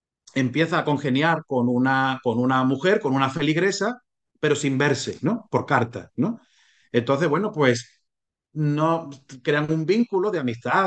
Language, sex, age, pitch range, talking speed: Spanish, male, 30-49, 130-160 Hz, 150 wpm